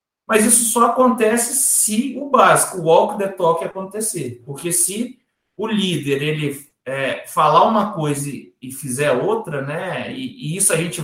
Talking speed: 170 wpm